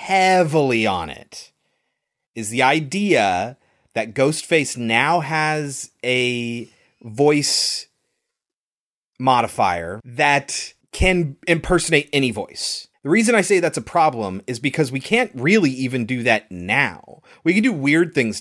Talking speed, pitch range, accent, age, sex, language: 125 wpm, 115-165 Hz, American, 30-49, male, English